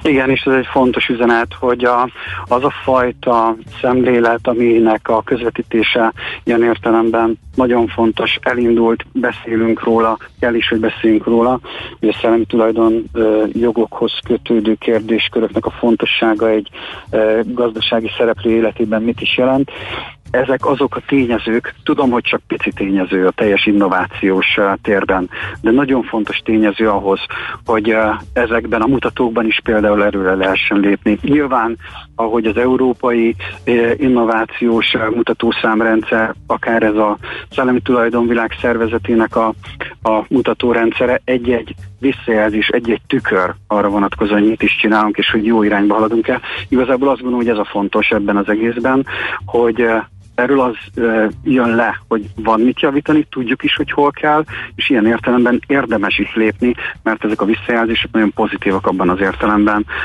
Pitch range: 105-120 Hz